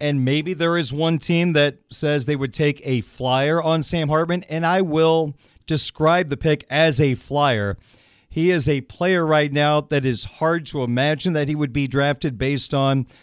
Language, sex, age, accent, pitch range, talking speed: English, male, 40-59, American, 135-160 Hz, 195 wpm